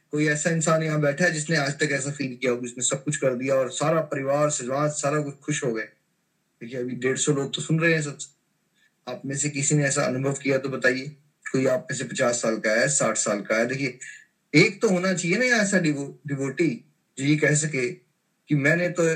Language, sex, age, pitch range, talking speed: Hindi, male, 20-39, 140-165 Hz, 235 wpm